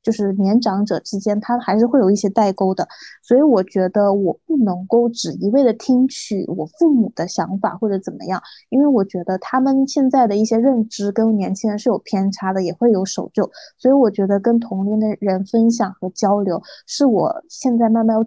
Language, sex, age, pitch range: Chinese, female, 20-39, 200-255 Hz